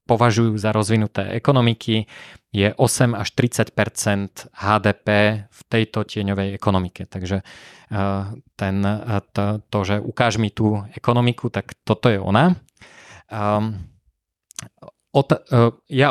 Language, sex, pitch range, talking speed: Slovak, male, 100-115 Hz, 95 wpm